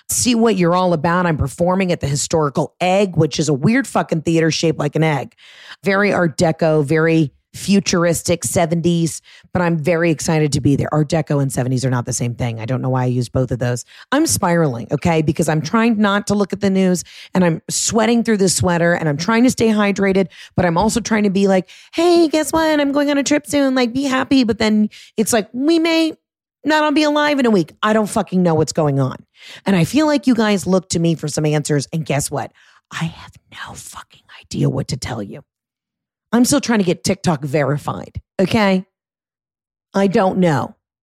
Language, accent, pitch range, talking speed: English, American, 155-210 Hz, 220 wpm